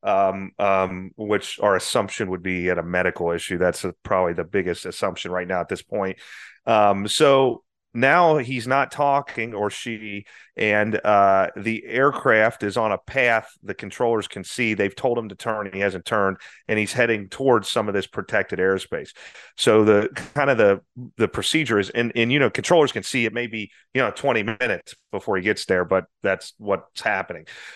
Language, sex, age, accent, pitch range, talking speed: English, male, 30-49, American, 100-120 Hz, 190 wpm